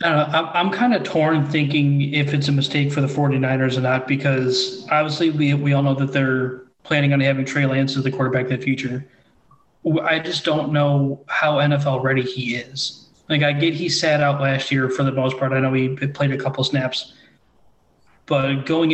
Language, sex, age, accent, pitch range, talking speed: English, male, 20-39, American, 130-145 Hz, 215 wpm